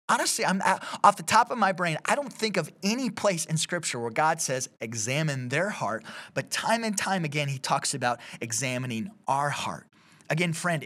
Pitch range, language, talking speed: 140-185 Hz, English, 200 wpm